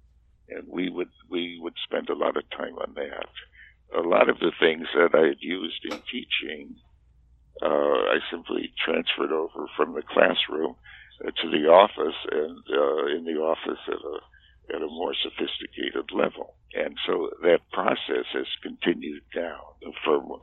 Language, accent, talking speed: English, American, 160 wpm